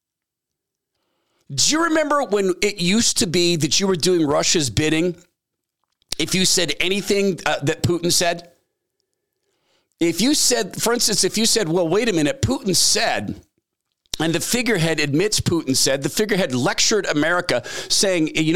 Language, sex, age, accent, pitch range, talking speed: English, male, 40-59, American, 155-210 Hz, 155 wpm